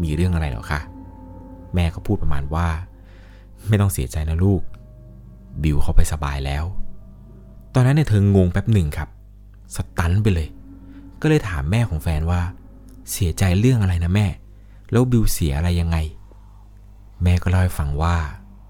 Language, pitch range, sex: Thai, 80-100 Hz, male